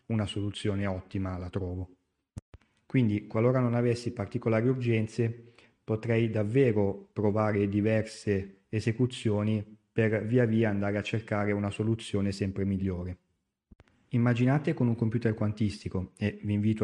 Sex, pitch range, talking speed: male, 100-115 Hz, 120 wpm